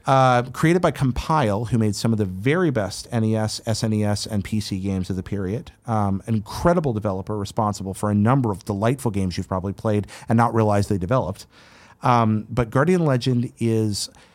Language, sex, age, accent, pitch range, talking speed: English, male, 40-59, American, 110-145 Hz, 175 wpm